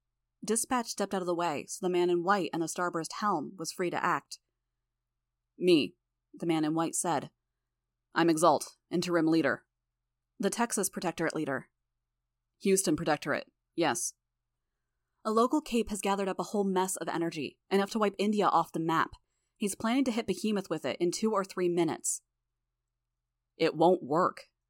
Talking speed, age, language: 170 wpm, 20-39, English